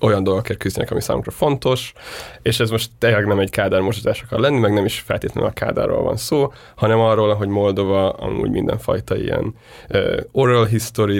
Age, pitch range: 20-39, 105-120 Hz